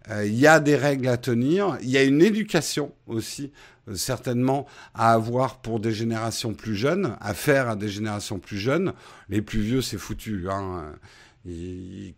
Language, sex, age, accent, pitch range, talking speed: French, male, 50-69, French, 115-135 Hz, 185 wpm